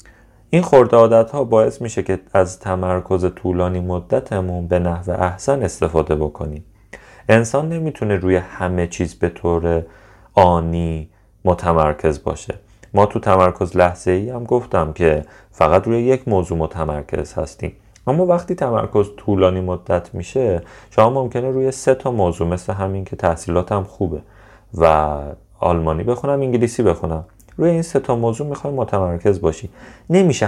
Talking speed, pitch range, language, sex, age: 140 wpm, 85-115 Hz, Persian, male, 30-49